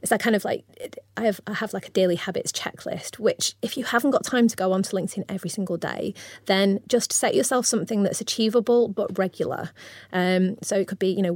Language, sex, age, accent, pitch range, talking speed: English, female, 30-49, British, 190-225 Hz, 225 wpm